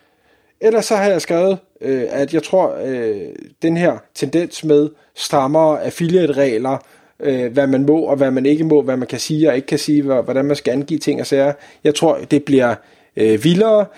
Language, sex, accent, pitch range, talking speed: Danish, male, native, 140-165 Hz, 185 wpm